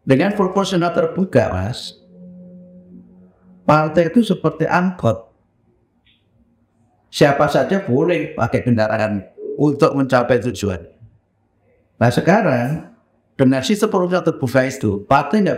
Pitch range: 140-195 Hz